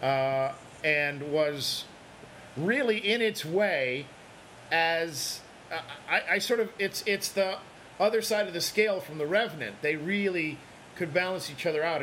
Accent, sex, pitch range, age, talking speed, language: American, male, 130-170 Hz, 40-59, 155 wpm, English